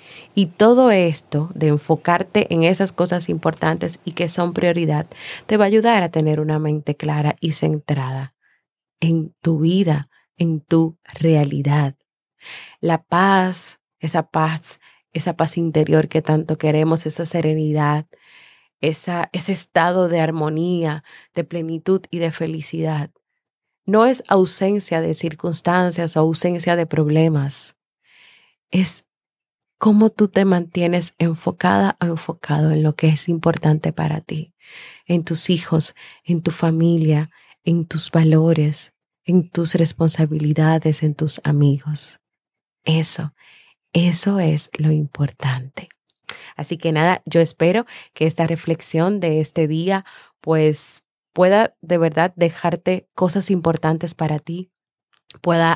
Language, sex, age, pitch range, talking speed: Spanish, female, 30-49, 155-175 Hz, 125 wpm